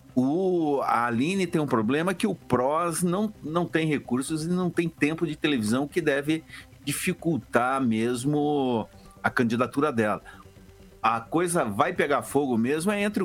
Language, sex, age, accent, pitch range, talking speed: Portuguese, male, 60-79, Brazilian, 130-210 Hz, 150 wpm